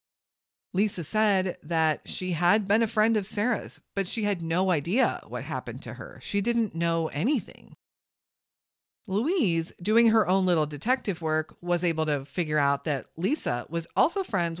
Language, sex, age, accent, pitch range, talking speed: English, female, 40-59, American, 145-210 Hz, 165 wpm